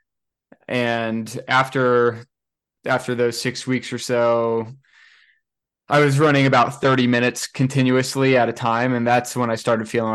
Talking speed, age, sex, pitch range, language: 140 wpm, 20-39, male, 110-130 Hz, English